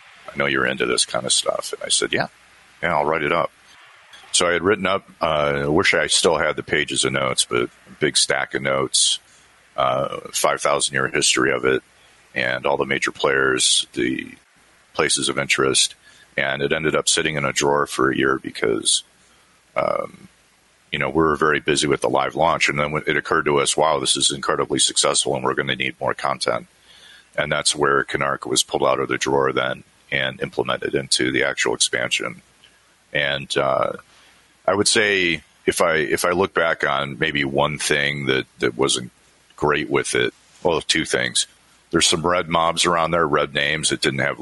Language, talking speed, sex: English, 195 wpm, male